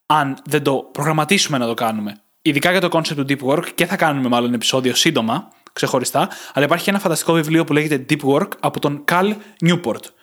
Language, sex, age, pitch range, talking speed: Greek, male, 20-39, 140-195 Hz, 200 wpm